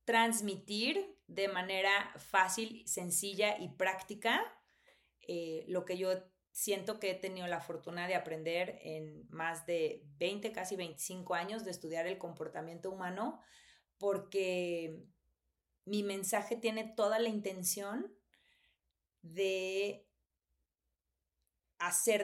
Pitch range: 165-200 Hz